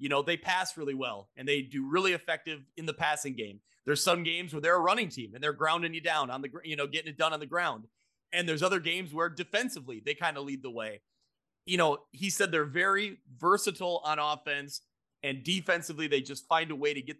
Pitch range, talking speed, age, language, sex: 140-170 Hz, 235 wpm, 30-49, English, male